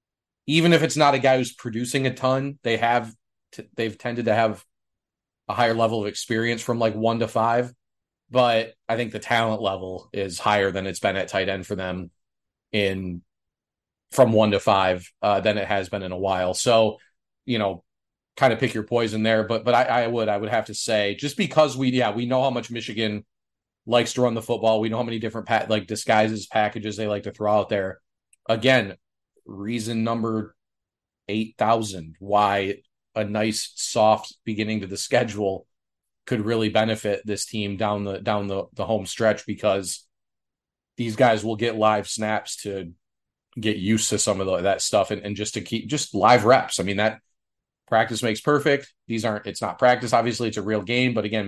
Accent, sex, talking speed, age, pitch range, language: American, male, 190 wpm, 30-49, 100-120 Hz, English